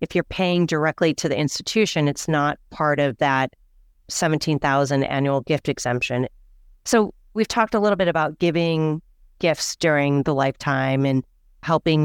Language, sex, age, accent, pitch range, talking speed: English, female, 30-49, American, 145-170 Hz, 150 wpm